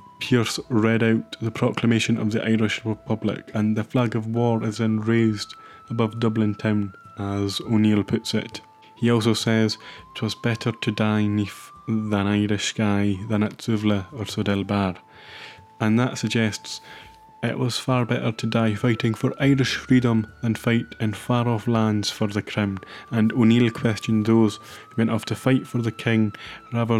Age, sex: 20-39, male